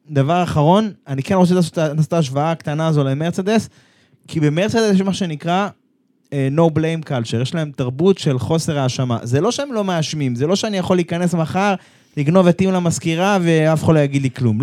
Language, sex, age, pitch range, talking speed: Hebrew, male, 20-39, 150-200 Hz, 185 wpm